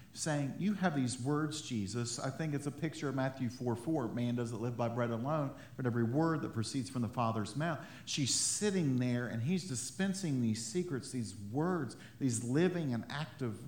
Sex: male